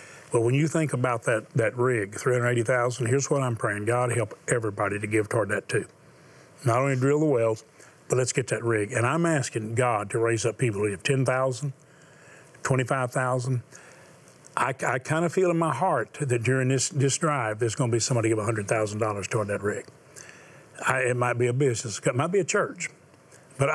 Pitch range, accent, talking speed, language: 115-140 Hz, American, 200 wpm, English